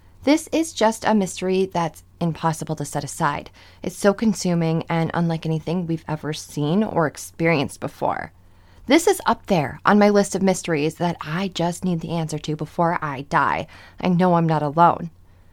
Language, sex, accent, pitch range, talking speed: English, female, American, 160-215 Hz, 180 wpm